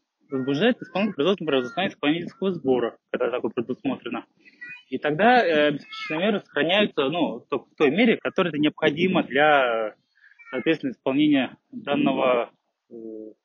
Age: 20-39